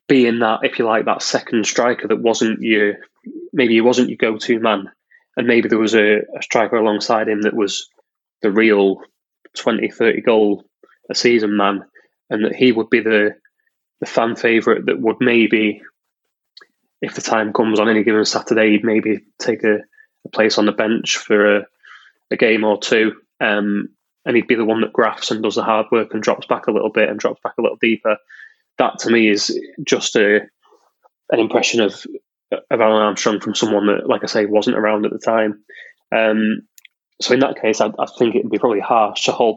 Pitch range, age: 105-120 Hz, 20-39